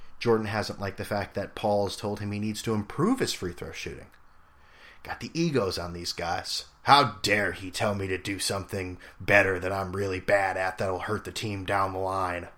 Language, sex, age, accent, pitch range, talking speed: English, male, 30-49, American, 90-115 Hz, 210 wpm